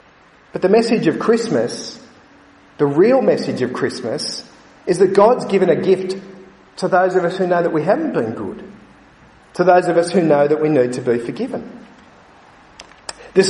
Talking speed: 180 wpm